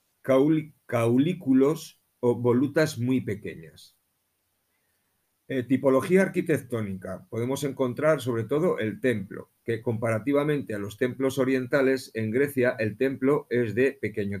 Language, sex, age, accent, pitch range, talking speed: Spanish, male, 50-69, Spanish, 115-140 Hz, 115 wpm